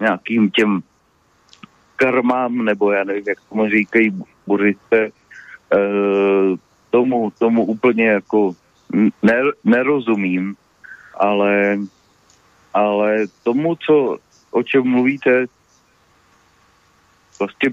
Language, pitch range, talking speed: Slovak, 100-125 Hz, 80 wpm